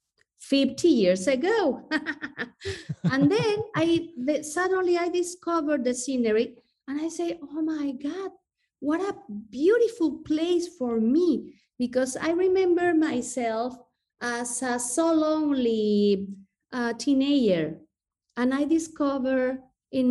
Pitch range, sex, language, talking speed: 230-315 Hz, female, English, 110 wpm